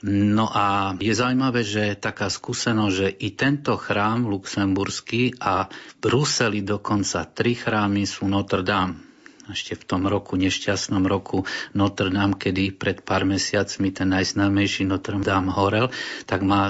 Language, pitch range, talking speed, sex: Slovak, 100-110 Hz, 145 wpm, male